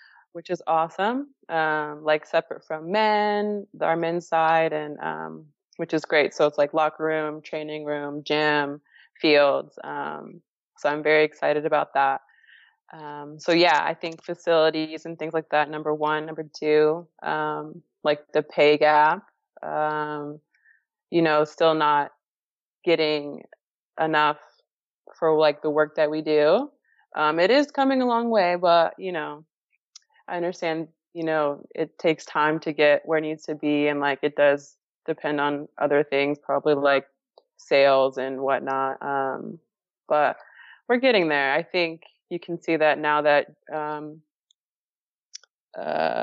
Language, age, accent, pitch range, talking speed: English, 20-39, American, 150-165 Hz, 150 wpm